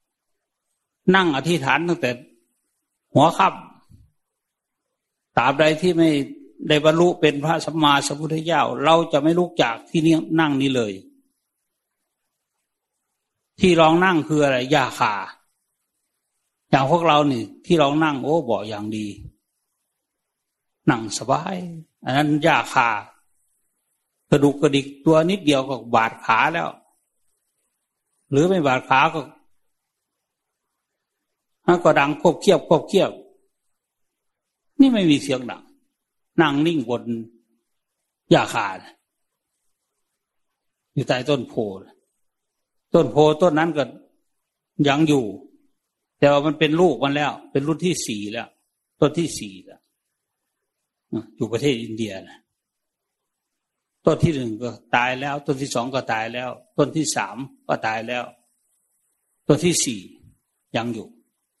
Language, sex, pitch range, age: English, male, 130-165 Hz, 60-79